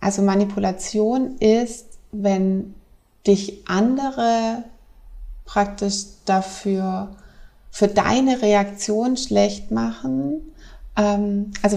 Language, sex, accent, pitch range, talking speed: German, female, German, 190-215 Hz, 70 wpm